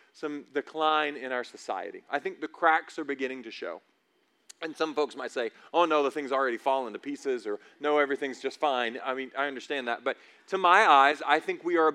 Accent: American